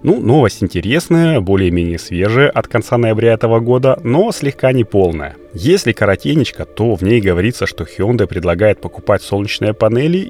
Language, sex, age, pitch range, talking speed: Russian, male, 30-49, 90-120 Hz, 150 wpm